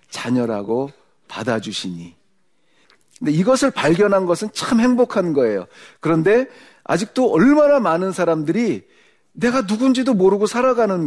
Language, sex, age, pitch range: Korean, male, 40-59, 165-255 Hz